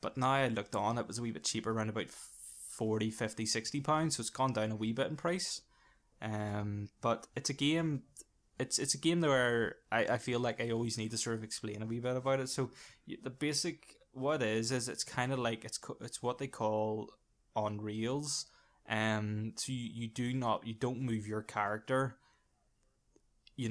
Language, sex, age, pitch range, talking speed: English, male, 10-29, 110-130 Hz, 210 wpm